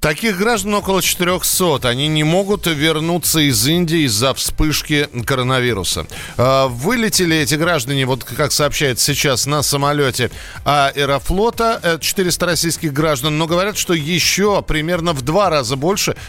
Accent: native